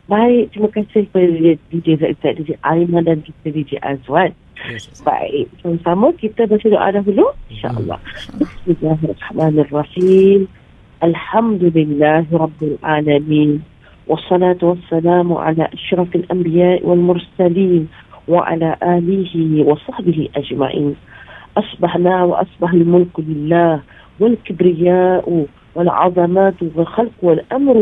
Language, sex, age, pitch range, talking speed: English, female, 40-59, 160-190 Hz, 95 wpm